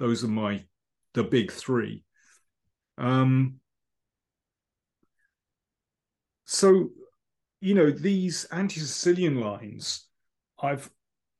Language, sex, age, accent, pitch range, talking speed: English, male, 30-49, British, 120-160 Hz, 80 wpm